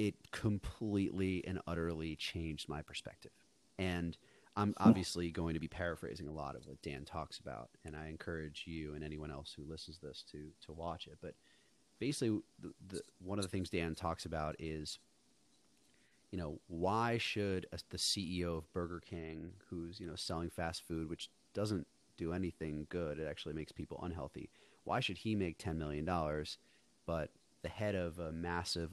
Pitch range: 80-95 Hz